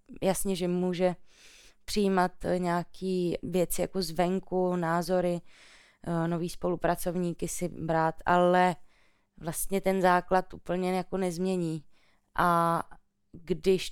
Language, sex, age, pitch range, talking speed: Czech, female, 20-39, 170-185 Hz, 90 wpm